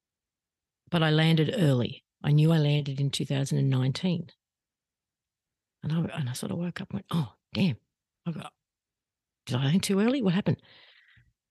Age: 50-69